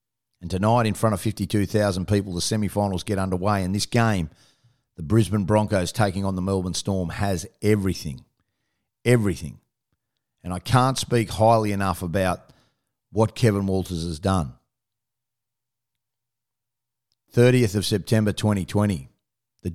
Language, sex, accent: English, male, Australian